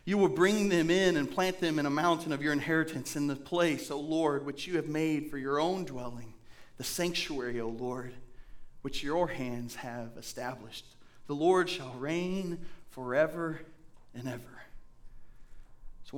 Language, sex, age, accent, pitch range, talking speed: English, male, 40-59, American, 130-180 Hz, 165 wpm